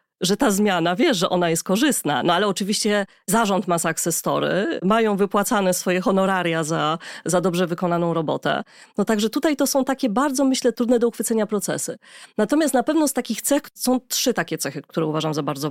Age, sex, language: 30-49, female, Polish